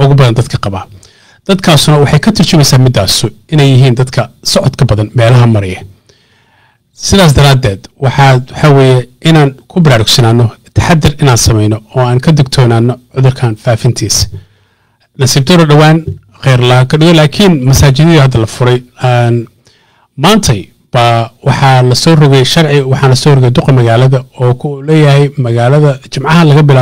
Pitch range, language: 115-140 Hz, English